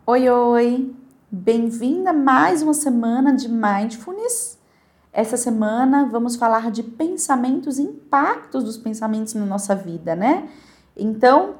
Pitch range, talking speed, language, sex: 200-275 Hz, 120 wpm, Portuguese, female